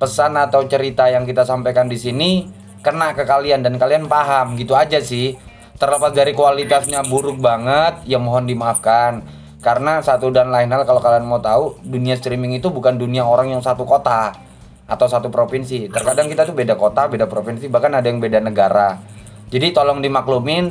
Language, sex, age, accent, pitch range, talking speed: Indonesian, male, 20-39, native, 120-150 Hz, 175 wpm